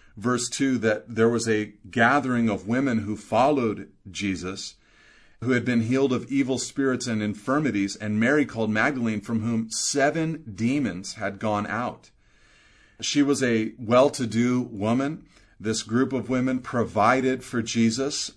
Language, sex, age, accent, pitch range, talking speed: English, male, 30-49, American, 105-135 Hz, 145 wpm